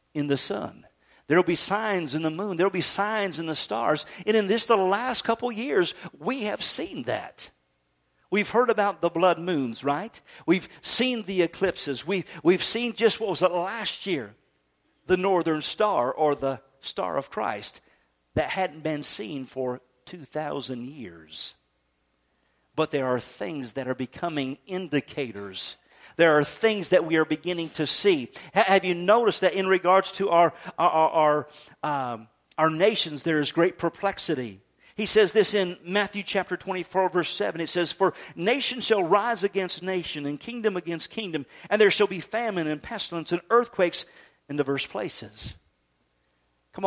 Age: 50-69